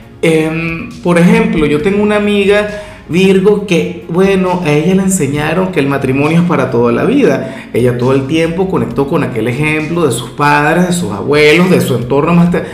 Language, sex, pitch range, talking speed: Spanish, male, 140-185 Hz, 185 wpm